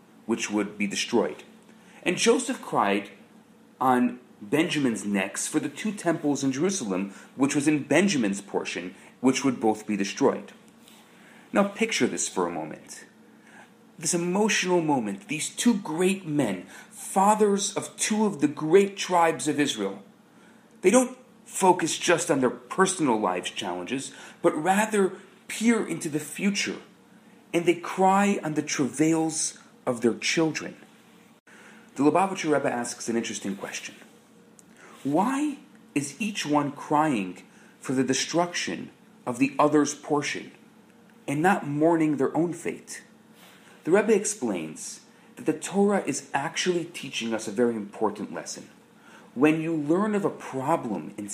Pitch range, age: 135-210 Hz, 40-59